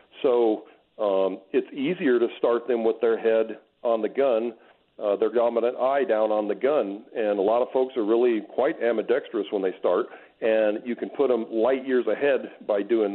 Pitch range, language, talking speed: 105-140 Hz, English, 195 wpm